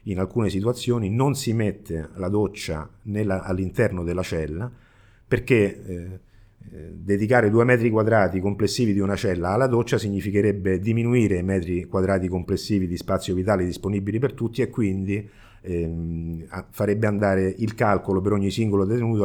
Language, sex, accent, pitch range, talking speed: Italian, male, native, 90-105 Hz, 145 wpm